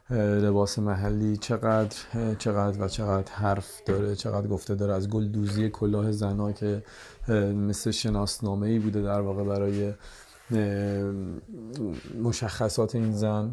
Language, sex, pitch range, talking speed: Persian, male, 100-110 Hz, 120 wpm